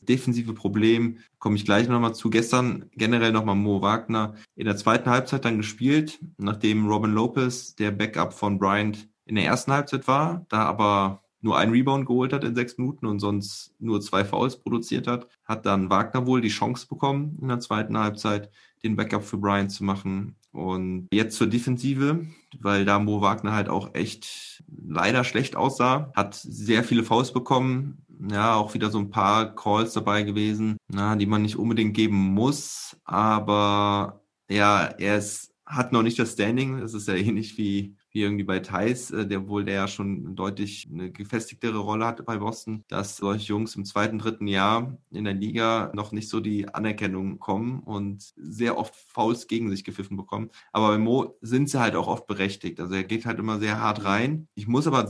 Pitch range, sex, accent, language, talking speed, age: 100-120 Hz, male, German, German, 190 wpm, 20-39